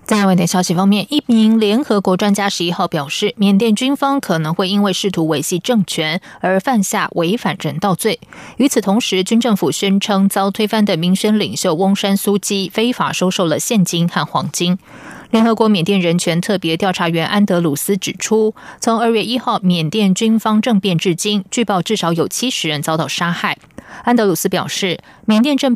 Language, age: Chinese, 20-39